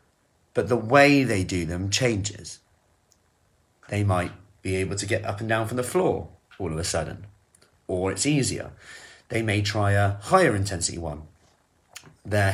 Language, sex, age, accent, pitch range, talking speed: English, male, 30-49, British, 100-125 Hz, 165 wpm